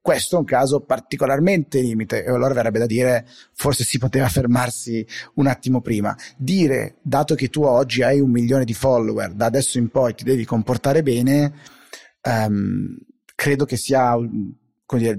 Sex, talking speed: male, 165 wpm